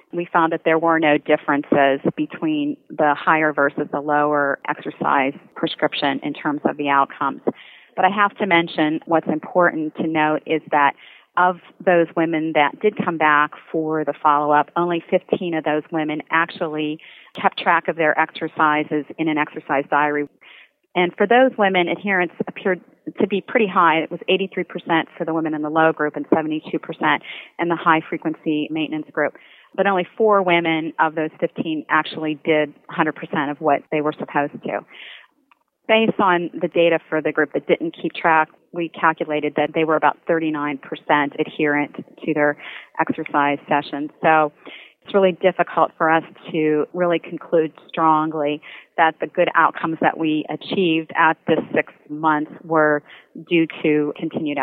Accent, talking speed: American, 160 wpm